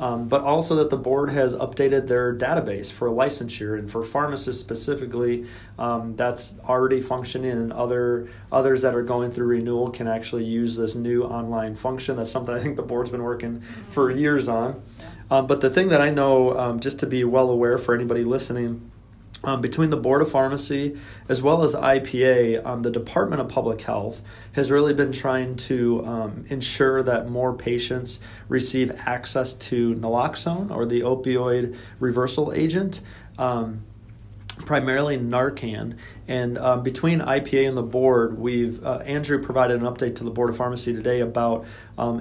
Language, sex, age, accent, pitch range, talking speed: English, male, 30-49, American, 120-135 Hz, 170 wpm